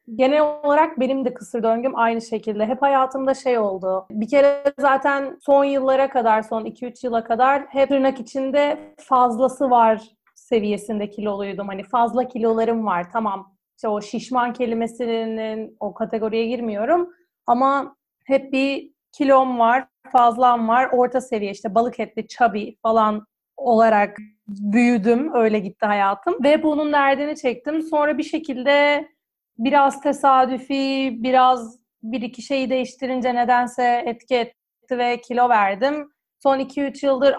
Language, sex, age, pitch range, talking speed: Turkish, female, 30-49, 220-275 Hz, 130 wpm